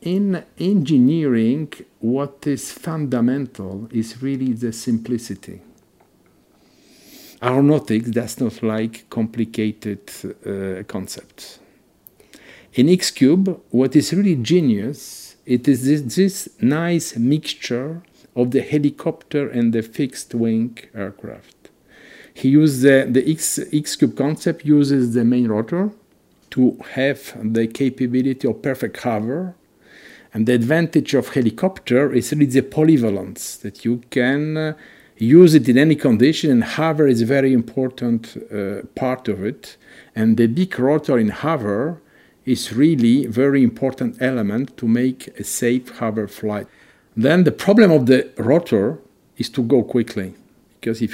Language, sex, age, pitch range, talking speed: English, male, 50-69, 115-150 Hz, 130 wpm